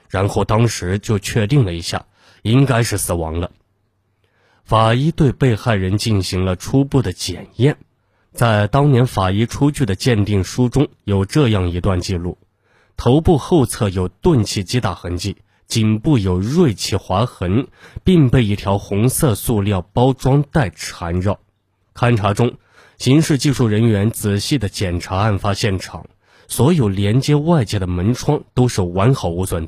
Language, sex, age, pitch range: Chinese, male, 20-39, 95-130 Hz